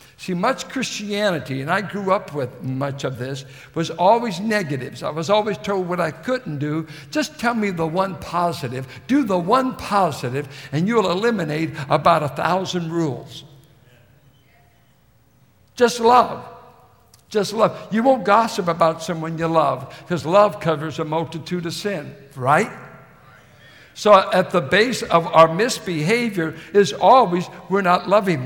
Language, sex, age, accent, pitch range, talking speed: English, male, 60-79, American, 140-205 Hz, 150 wpm